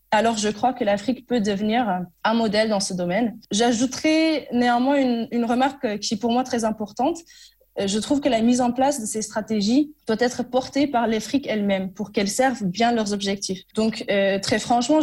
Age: 20-39